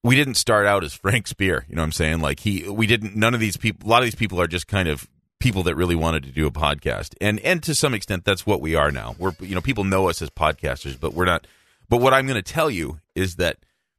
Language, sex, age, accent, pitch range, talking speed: English, male, 30-49, American, 85-115 Hz, 290 wpm